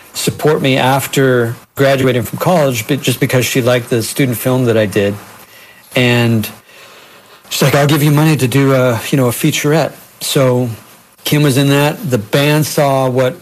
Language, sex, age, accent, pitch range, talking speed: English, male, 50-69, American, 120-145 Hz, 180 wpm